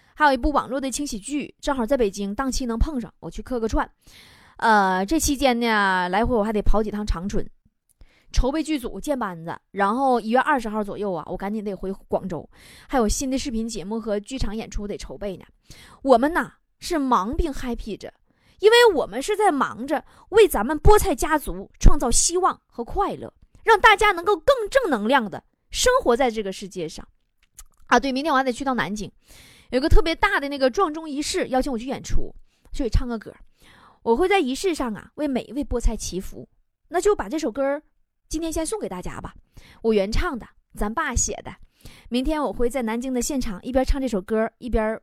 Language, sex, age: Chinese, female, 20-39